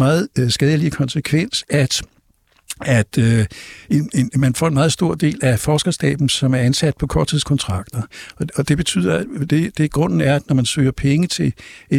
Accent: native